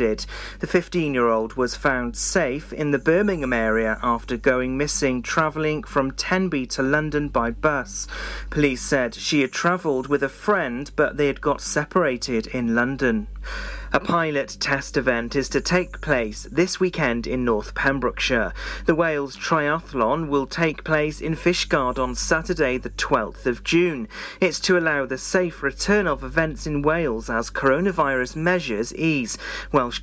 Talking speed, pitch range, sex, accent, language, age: 150 wpm, 130-165 Hz, male, British, English, 40-59